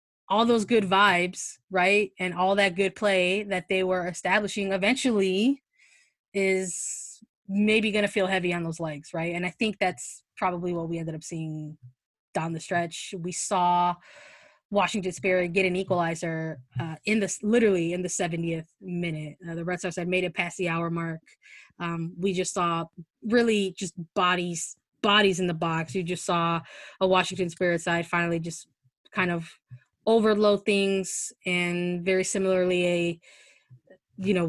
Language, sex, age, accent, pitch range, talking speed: English, female, 20-39, American, 170-205 Hz, 160 wpm